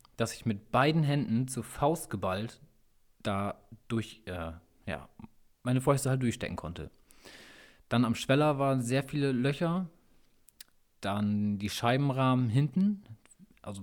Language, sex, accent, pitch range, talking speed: German, male, German, 110-135 Hz, 125 wpm